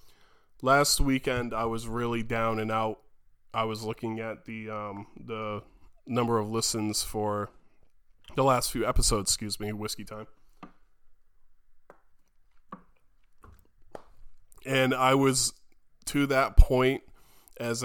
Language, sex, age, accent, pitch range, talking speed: English, male, 20-39, American, 105-120 Hz, 115 wpm